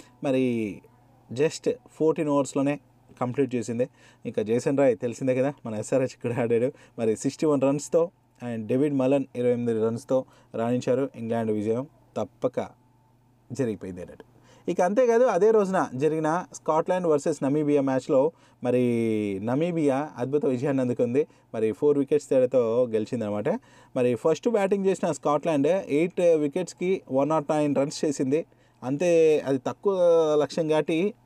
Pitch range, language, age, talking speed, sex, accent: 120-155 Hz, Telugu, 20-39, 130 wpm, male, native